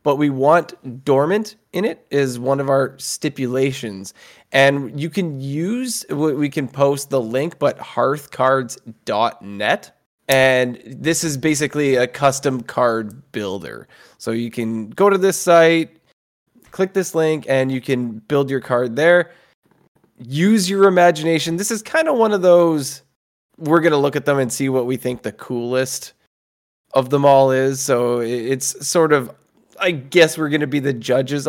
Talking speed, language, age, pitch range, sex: 165 wpm, English, 20-39, 130-175 Hz, male